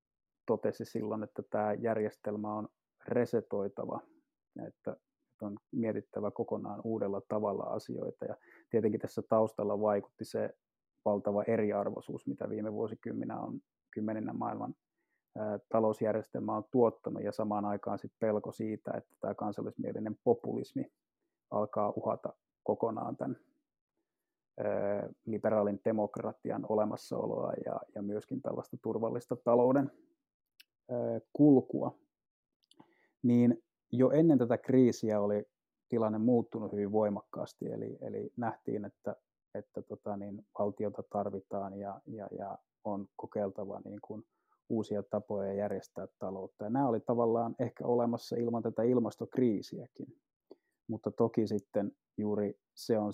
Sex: male